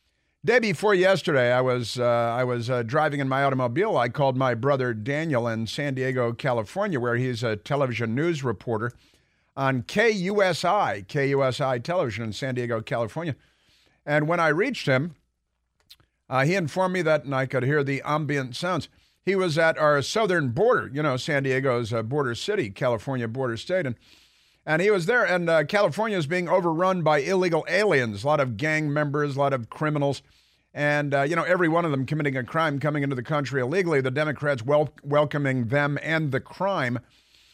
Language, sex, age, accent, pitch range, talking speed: English, male, 50-69, American, 125-160 Hz, 185 wpm